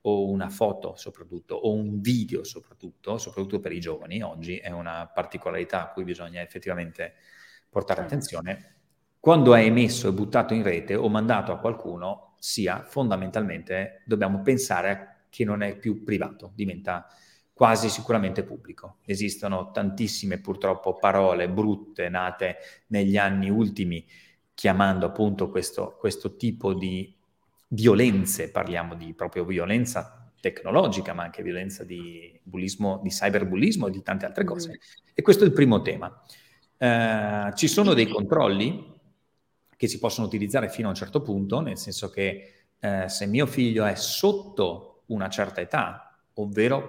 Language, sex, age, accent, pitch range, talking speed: Italian, male, 30-49, native, 95-115 Hz, 145 wpm